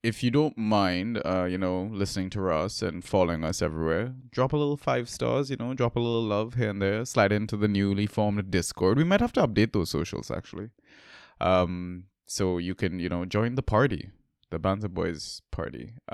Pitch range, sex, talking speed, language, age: 95-115 Hz, male, 205 wpm, English, 20-39